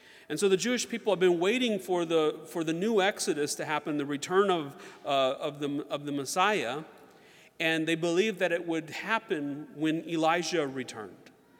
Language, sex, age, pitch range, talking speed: English, male, 40-59, 140-170 Hz, 180 wpm